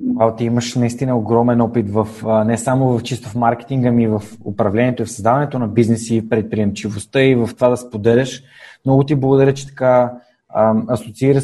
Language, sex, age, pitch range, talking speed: Bulgarian, male, 20-39, 115-135 Hz, 180 wpm